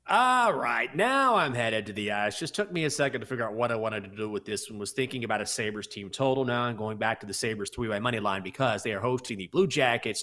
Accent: American